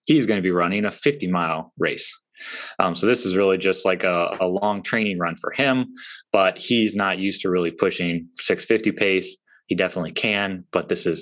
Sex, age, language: male, 20-39, English